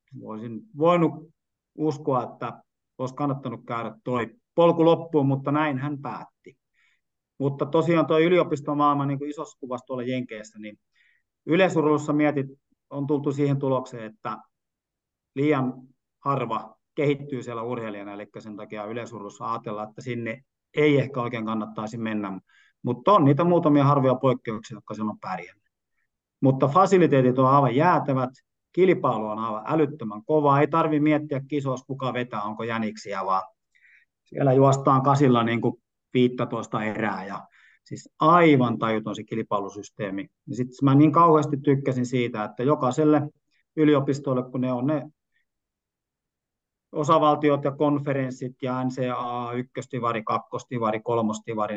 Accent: native